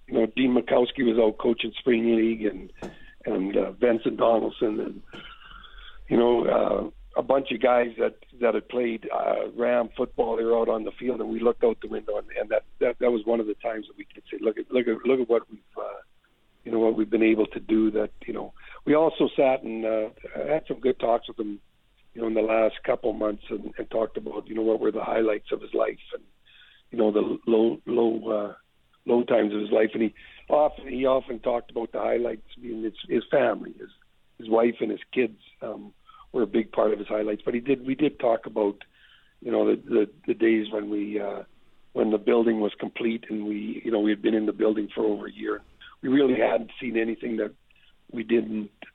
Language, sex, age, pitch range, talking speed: English, male, 50-69, 110-125 Hz, 230 wpm